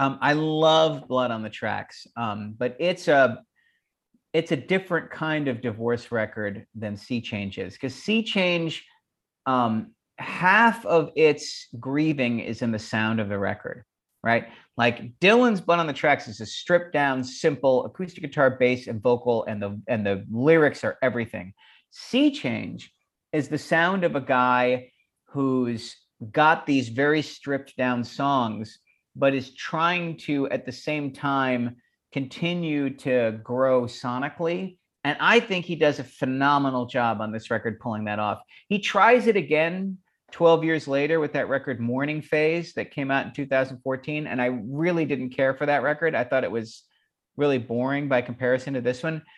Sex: male